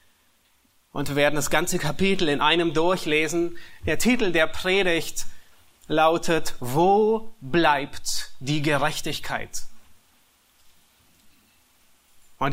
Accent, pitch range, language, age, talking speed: German, 130-180 Hz, German, 30-49, 90 wpm